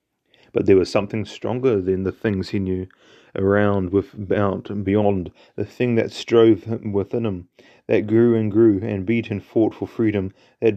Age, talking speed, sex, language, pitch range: 30-49, 175 wpm, male, English, 100-120 Hz